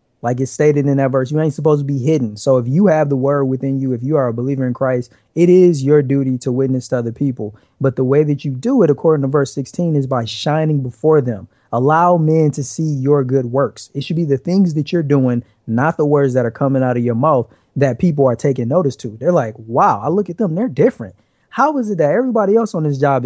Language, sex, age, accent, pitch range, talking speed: English, male, 20-39, American, 130-165 Hz, 260 wpm